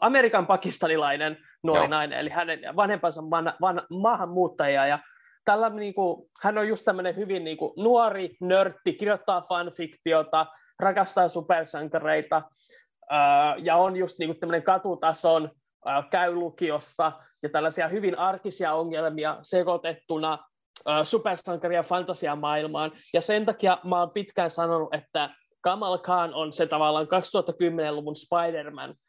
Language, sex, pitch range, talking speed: Finnish, male, 155-185 Hz, 120 wpm